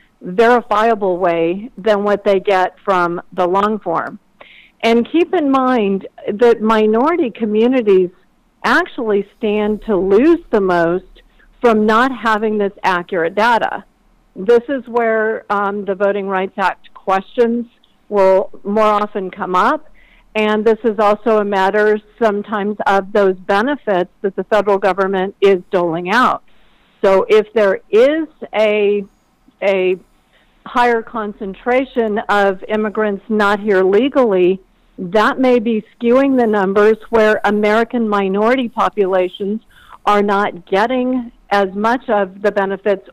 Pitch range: 195-225 Hz